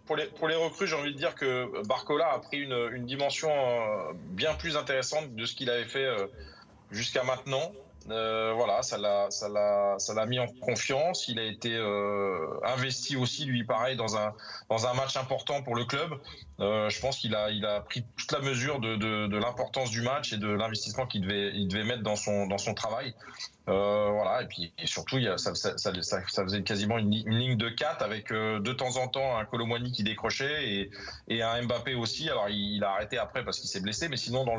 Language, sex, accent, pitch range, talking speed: French, male, French, 105-130 Hz, 230 wpm